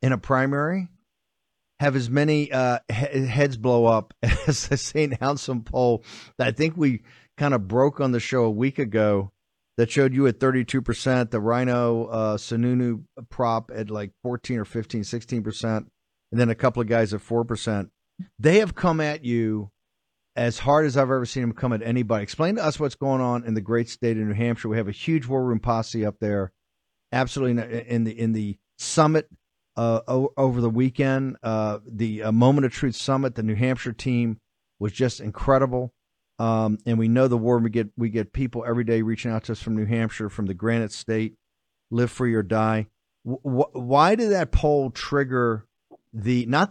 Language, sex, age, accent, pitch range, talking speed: English, male, 50-69, American, 110-135 Hz, 195 wpm